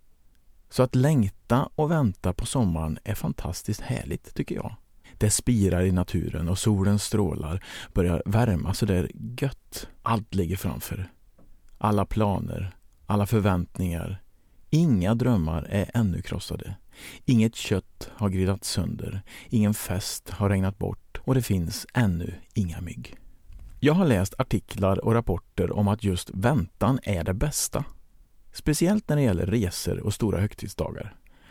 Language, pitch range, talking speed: Swedish, 90-115 Hz, 140 wpm